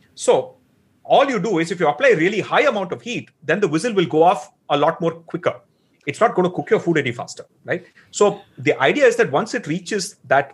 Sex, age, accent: male, 30-49, Indian